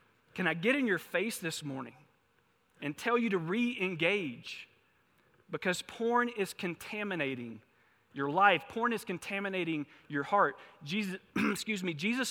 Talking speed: 125 wpm